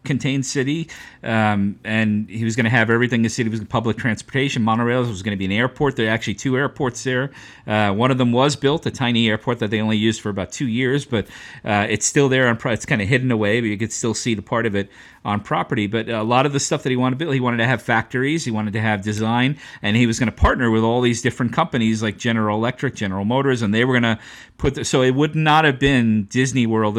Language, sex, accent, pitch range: English, male, American, 110-130 Hz